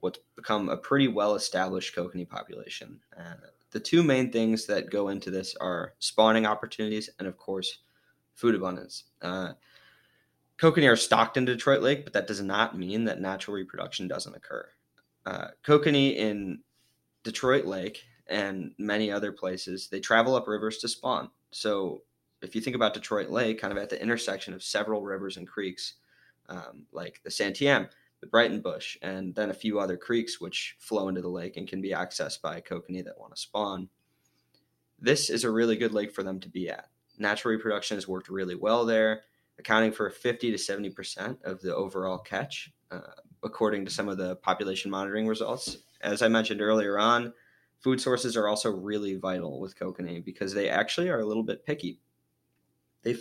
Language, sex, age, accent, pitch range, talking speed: English, male, 20-39, American, 95-115 Hz, 180 wpm